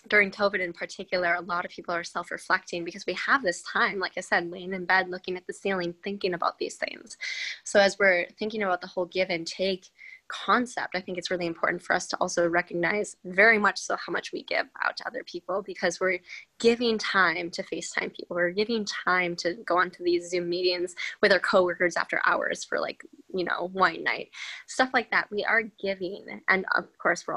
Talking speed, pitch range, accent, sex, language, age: 215 wpm, 175-200 Hz, American, female, English, 20-39